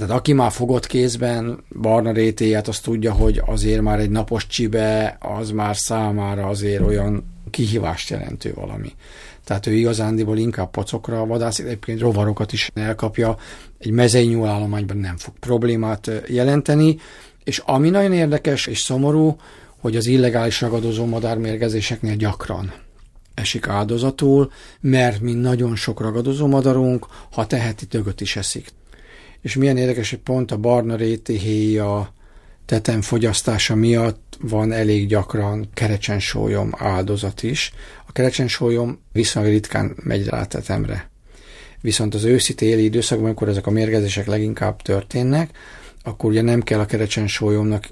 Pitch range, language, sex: 105-120 Hz, Hungarian, male